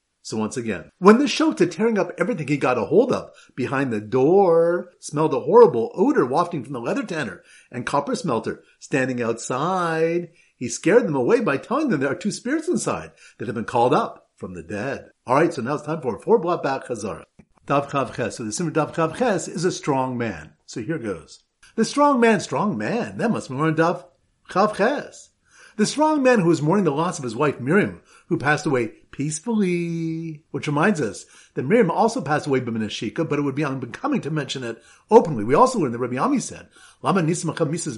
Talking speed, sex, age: 200 wpm, male, 50-69